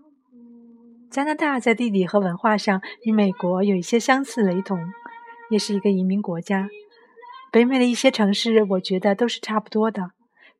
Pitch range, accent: 195-255 Hz, native